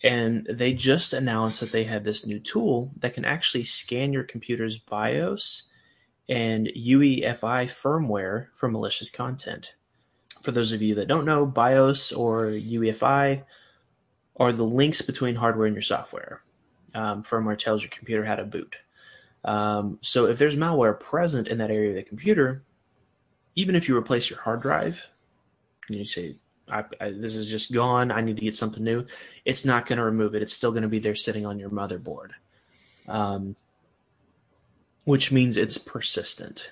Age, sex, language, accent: 20-39, male, English, American